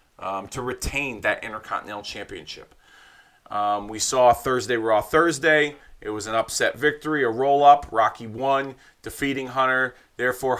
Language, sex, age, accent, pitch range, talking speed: English, male, 30-49, American, 105-135 Hz, 135 wpm